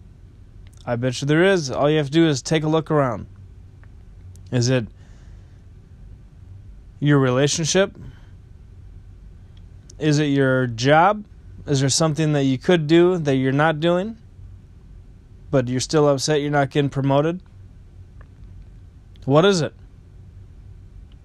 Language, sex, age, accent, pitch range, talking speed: English, male, 20-39, American, 95-155 Hz, 125 wpm